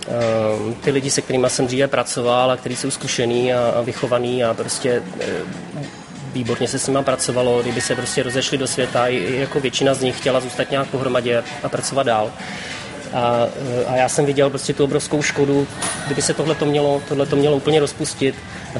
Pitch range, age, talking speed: 130-145 Hz, 20-39, 190 wpm